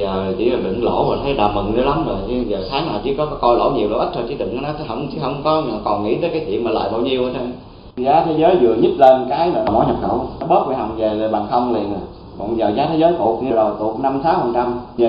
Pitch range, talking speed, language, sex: 120-155 Hz, 145 wpm, Vietnamese, male